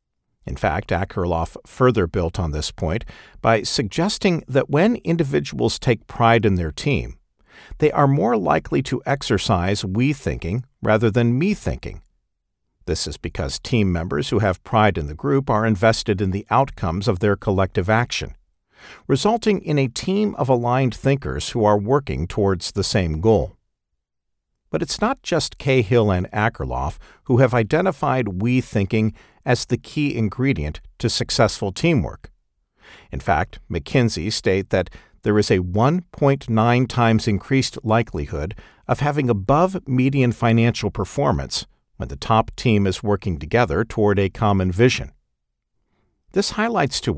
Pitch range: 95-130 Hz